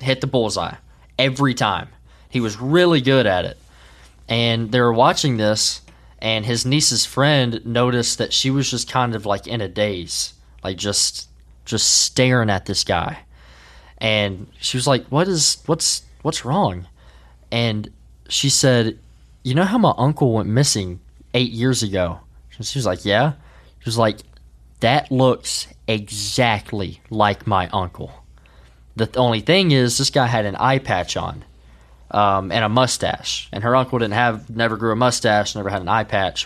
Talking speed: 170 wpm